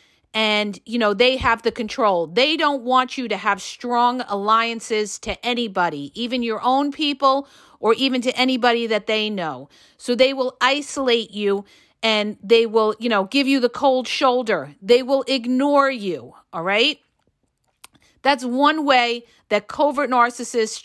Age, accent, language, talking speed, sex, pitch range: 40-59, American, English, 160 wpm, female, 215-275 Hz